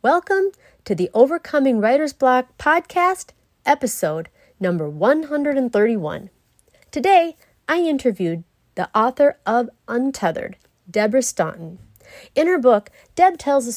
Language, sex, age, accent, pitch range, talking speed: English, female, 40-59, American, 185-270 Hz, 110 wpm